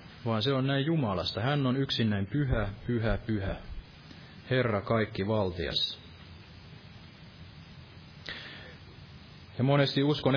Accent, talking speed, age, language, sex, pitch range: native, 105 wpm, 30-49, Finnish, male, 100-130 Hz